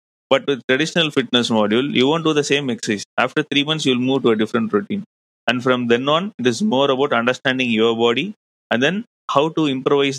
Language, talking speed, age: English, 210 wpm, 30-49